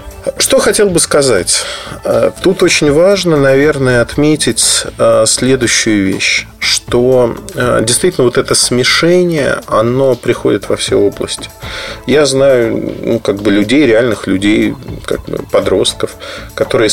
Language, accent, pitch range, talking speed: Russian, native, 110-160 Hz, 115 wpm